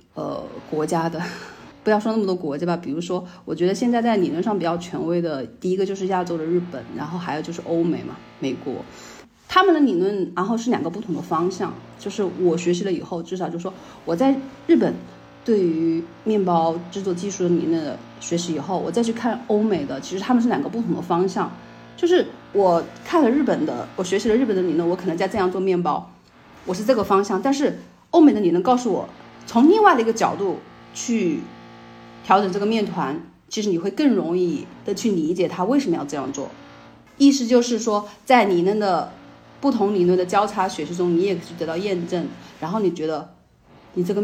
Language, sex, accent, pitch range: Chinese, female, native, 165-215 Hz